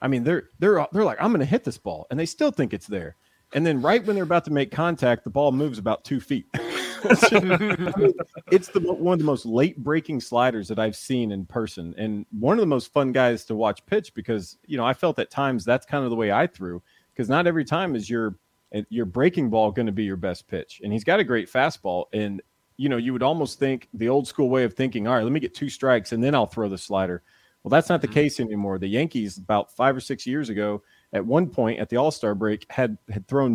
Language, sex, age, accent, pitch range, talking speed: English, male, 40-59, American, 110-145 Hz, 250 wpm